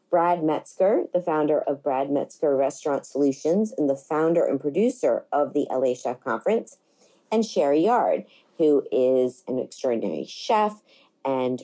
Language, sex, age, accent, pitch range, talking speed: English, female, 40-59, American, 140-195 Hz, 145 wpm